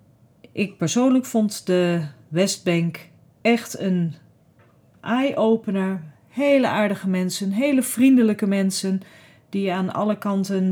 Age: 40-59